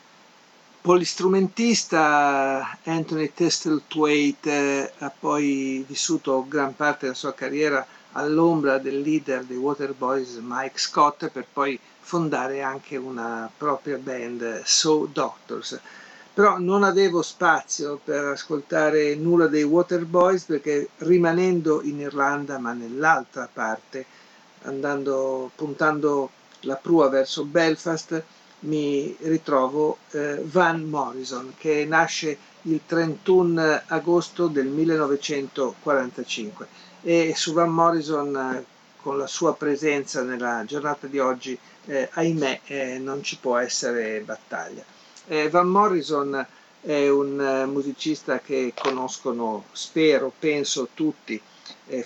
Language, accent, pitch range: Italian, native, 135-160 Hz